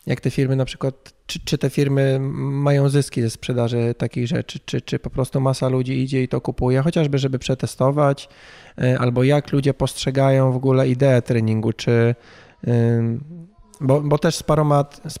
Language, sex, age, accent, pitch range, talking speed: Polish, male, 20-39, native, 115-135 Hz, 170 wpm